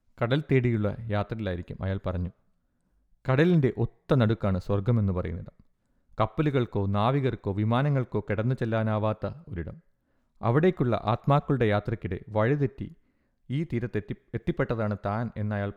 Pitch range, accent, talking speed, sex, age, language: 100-125 Hz, native, 90 wpm, male, 30-49, Malayalam